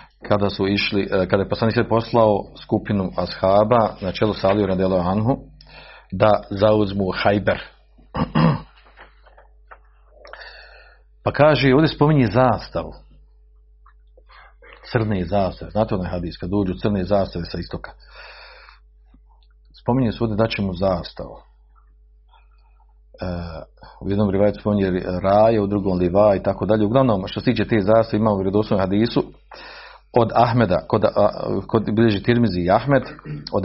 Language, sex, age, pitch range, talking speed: Croatian, male, 50-69, 95-110 Hz, 125 wpm